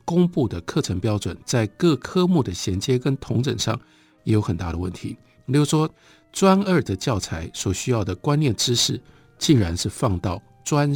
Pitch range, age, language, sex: 95-130 Hz, 60-79, Chinese, male